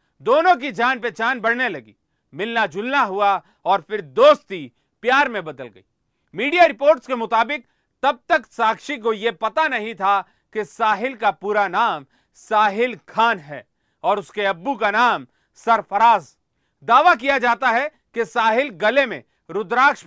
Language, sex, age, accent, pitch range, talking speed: Hindi, male, 40-59, native, 195-265 Hz, 155 wpm